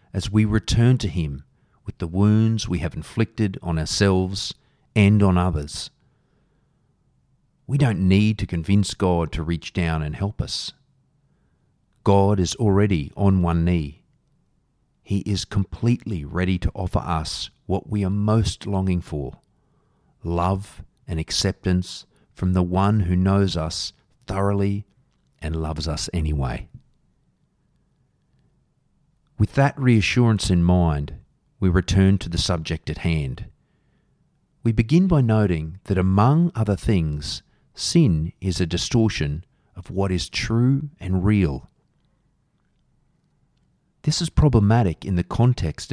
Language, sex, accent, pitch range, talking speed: English, male, Australian, 85-110 Hz, 125 wpm